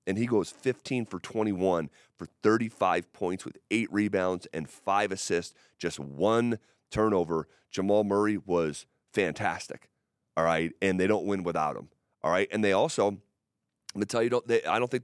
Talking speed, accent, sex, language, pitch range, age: 170 wpm, American, male, English, 90-115 Hz, 30-49